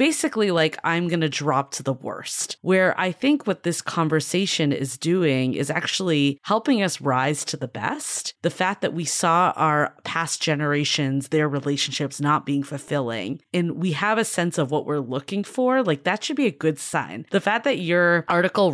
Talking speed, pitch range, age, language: 190 wpm, 140-180 Hz, 20-39, English